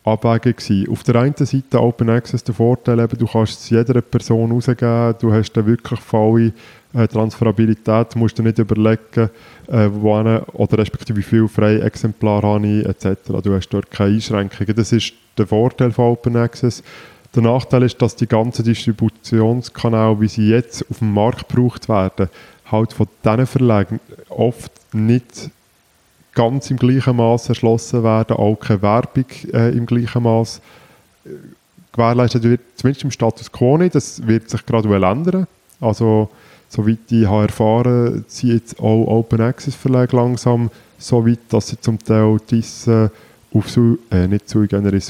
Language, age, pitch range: German, 20-39, 110-125 Hz